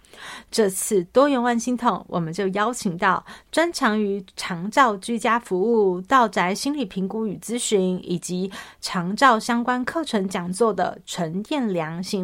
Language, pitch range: Chinese, 190-240 Hz